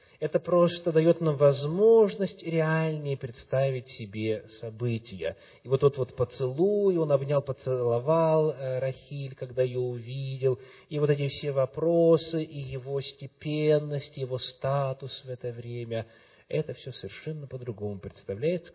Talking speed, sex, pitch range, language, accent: 125 wpm, male, 115-150 Hz, Russian, native